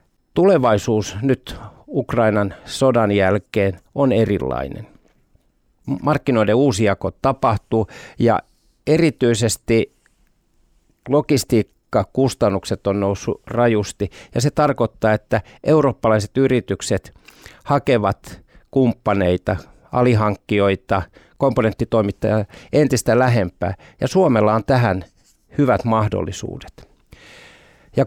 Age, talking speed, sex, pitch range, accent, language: 60-79, 75 wpm, male, 100-130 Hz, native, Finnish